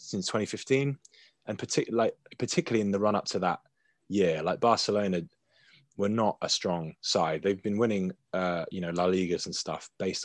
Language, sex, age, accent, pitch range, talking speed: English, male, 20-39, British, 90-130 Hz, 175 wpm